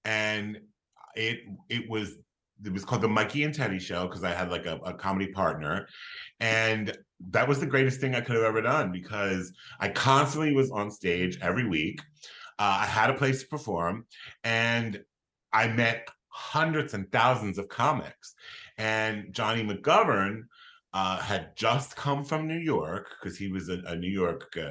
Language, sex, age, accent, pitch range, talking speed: English, male, 30-49, American, 100-135 Hz, 175 wpm